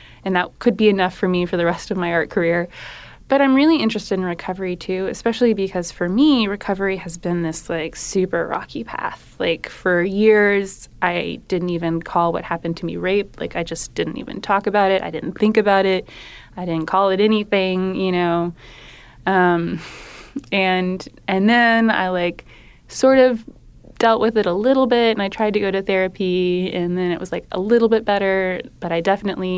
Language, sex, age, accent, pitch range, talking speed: English, female, 20-39, American, 170-200 Hz, 200 wpm